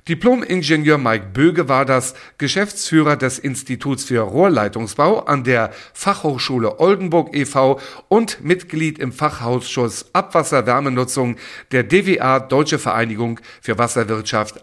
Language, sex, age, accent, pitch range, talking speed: German, male, 50-69, German, 115-165 Hz, 110 wpm